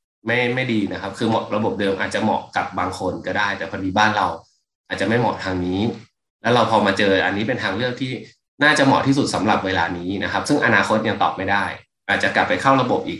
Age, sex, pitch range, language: 20-39, male, 105-135 Hz, Thai